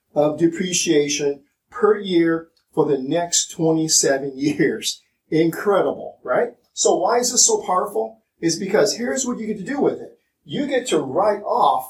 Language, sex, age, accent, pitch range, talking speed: English, male, 50-69, American, 150-215 Hz, 160 wpm